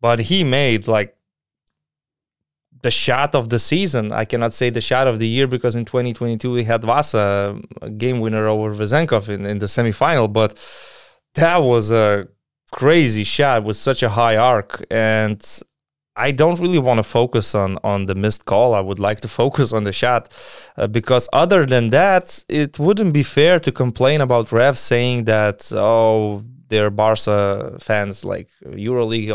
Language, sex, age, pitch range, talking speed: English, male, 20-39, 110-125 Hz, 170 wpm